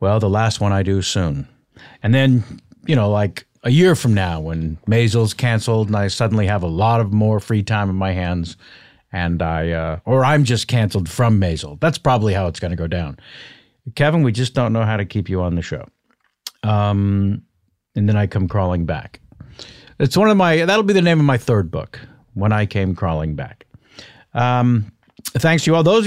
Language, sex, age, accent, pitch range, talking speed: English, male, 50-69, American, 100-125 Hz, 215 wpm